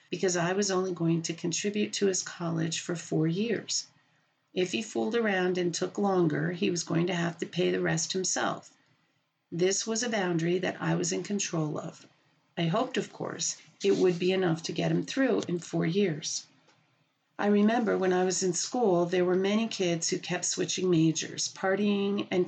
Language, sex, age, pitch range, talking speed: English, female, 40-59, 165-195 Hz, 190 wpm